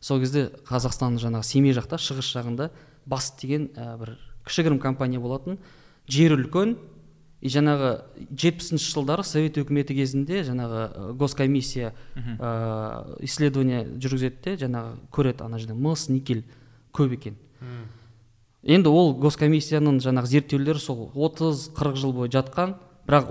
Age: 20-39